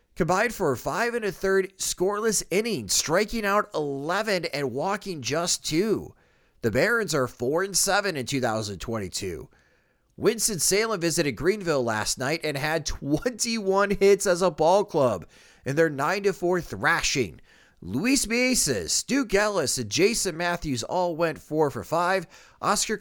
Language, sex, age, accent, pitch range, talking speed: English, male, 30-49, American, 135-190 Hz, 145 wpm